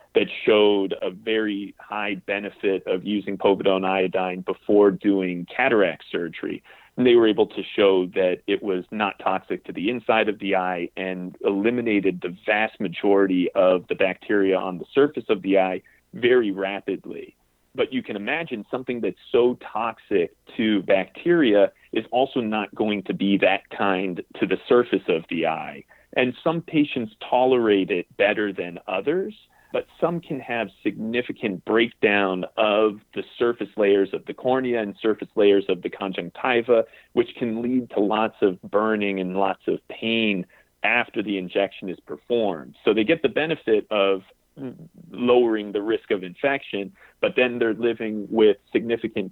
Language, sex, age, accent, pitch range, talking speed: English, male, 40-59, American, 100-125 Hz, 160 wpm